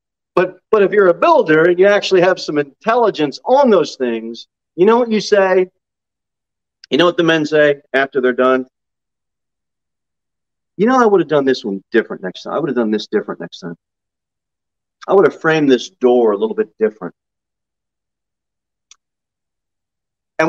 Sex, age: male, 40-59